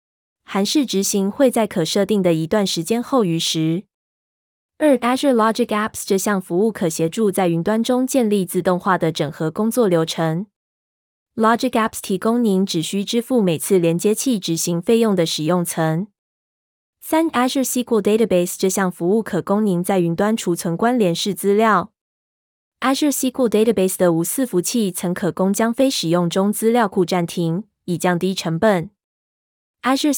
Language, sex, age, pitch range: Chinese, female, 20-39, 175-220 Hz